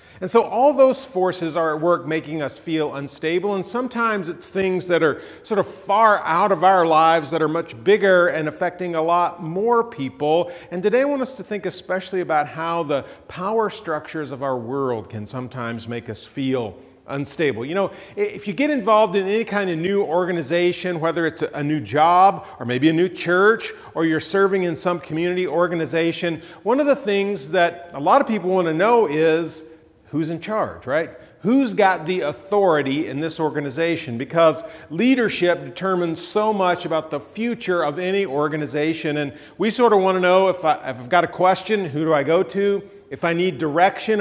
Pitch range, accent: 150-195 Hz, American